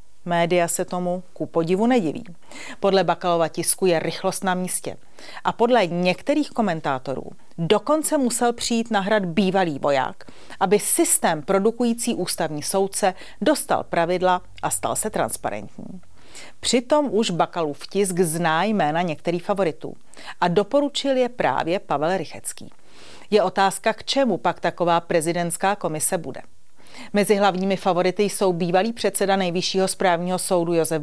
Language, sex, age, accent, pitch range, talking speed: Czech, female, 40-59, native, 175-215 Hz, 130 wpm